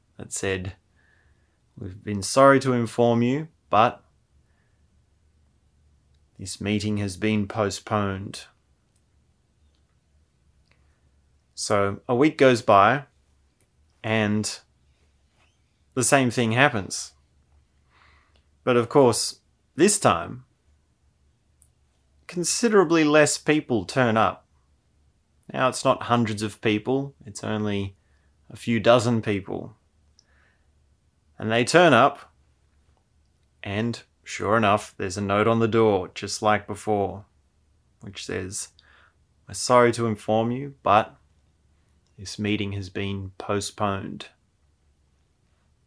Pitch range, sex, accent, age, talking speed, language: 75-115 Hz, male, Australian, 20-39, 100 wpm, English